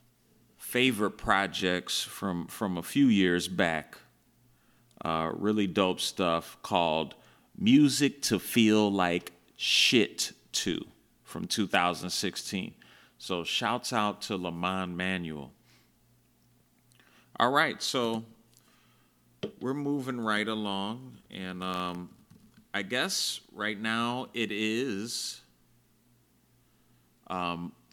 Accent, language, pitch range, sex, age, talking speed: American, English, 100-130 Hz, male, 30-49, 90 wpm